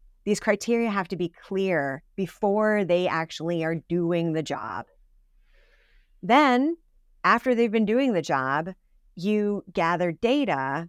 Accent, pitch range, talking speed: American, 170-225 Hz, 125 wpm